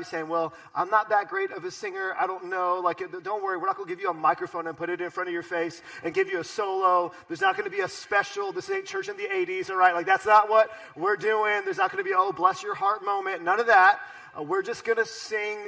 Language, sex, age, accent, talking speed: English, male, 30-49, American, 290 wpm